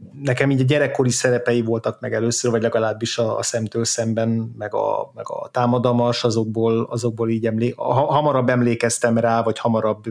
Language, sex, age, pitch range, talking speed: Hungarian, male, 30-49, 110-125 Hz, 165 wpm